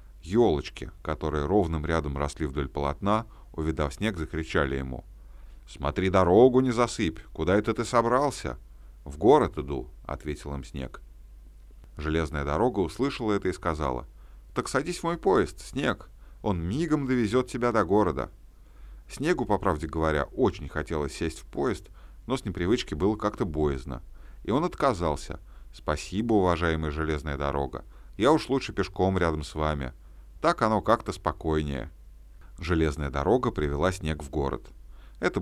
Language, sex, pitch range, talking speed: Russian, male, 70-100 Hz, 140 wpm